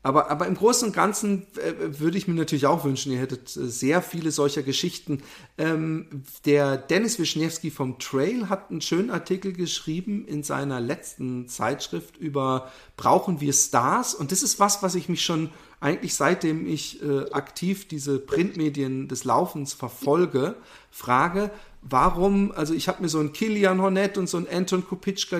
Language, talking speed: German, 170 wpm